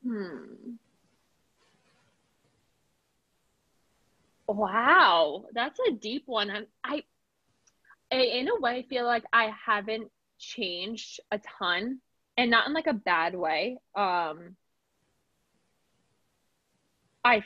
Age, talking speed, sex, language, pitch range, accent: 20-39, 95 wpm, female, English, 190-240 Hz, American